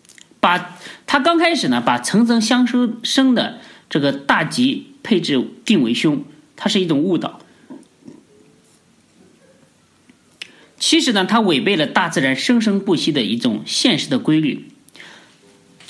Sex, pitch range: male, 160-260 Hz